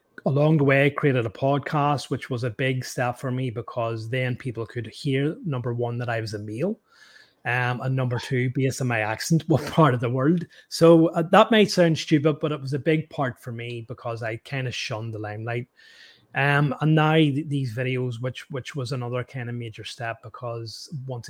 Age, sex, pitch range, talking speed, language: 30-49, male, 120-145 Hz, 215 wpm, English